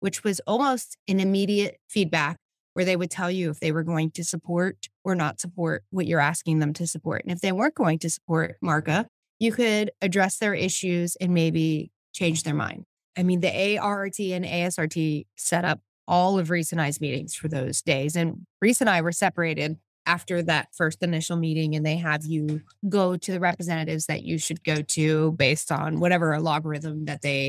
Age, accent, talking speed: 20-39, American, 200 wpm